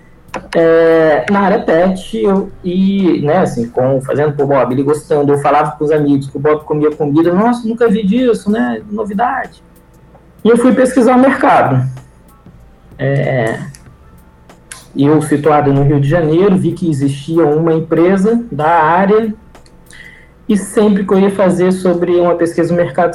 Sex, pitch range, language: male, 150-195 Hz, Portuguese